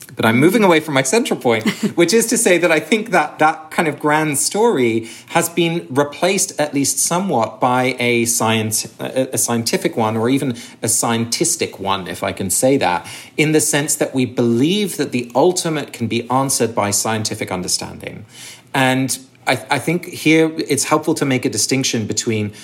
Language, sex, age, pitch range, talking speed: English, male, 30-49, 105-135 Hz, 185 wpm